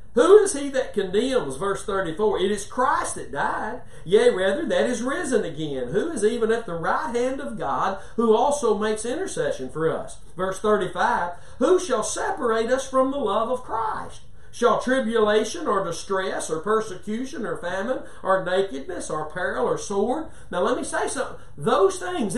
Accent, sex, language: American, male, English